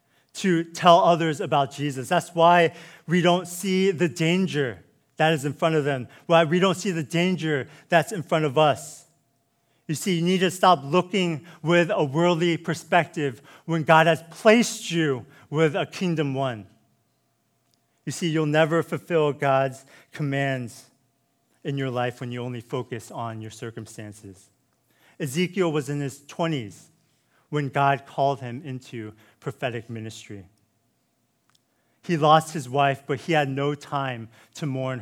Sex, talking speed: male, 155 wpm